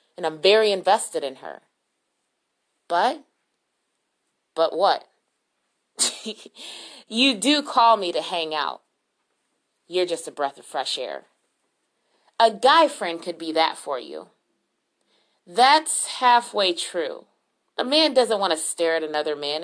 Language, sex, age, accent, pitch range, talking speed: English, female, 30-49, American, 160-225 Hz, 130 wpm